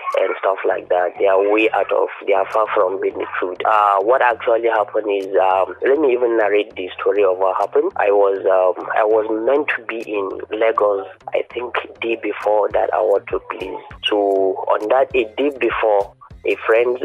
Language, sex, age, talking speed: English, male, 20-39, 195 wpm